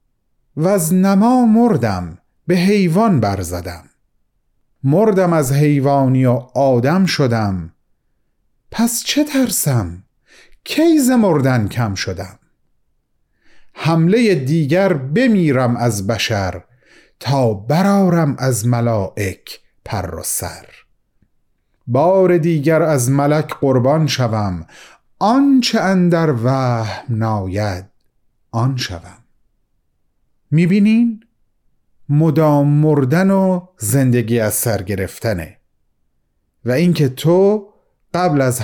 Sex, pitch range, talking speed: male, 110-180 Hz, 85 wpm